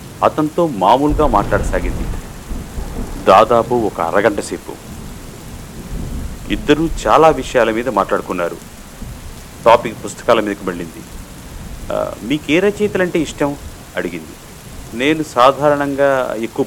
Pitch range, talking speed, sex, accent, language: 110-160 Hz, 85 wpm, male, native, Telugu